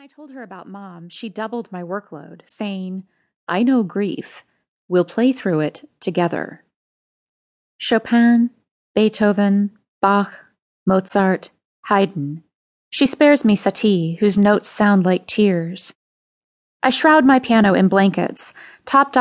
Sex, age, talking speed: female, 20-39, 125 wpm